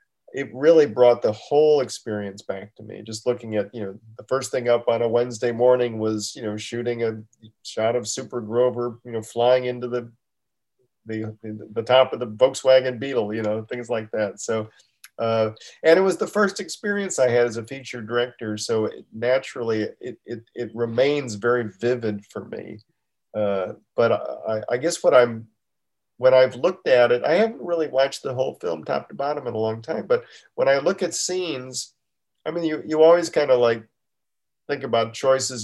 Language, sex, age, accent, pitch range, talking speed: English, male, 40-59, American, 115-155 Hz, 195 wpm